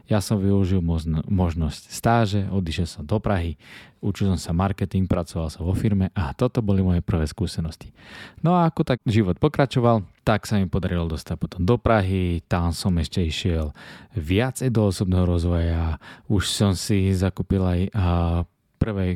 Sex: male